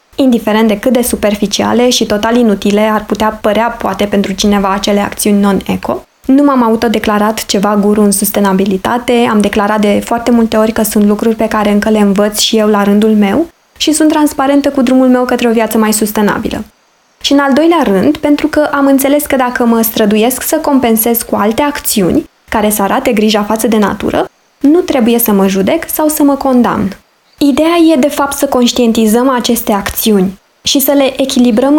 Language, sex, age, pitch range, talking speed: Romanian, female, 20-39, 215-275 Hz, 190 wpm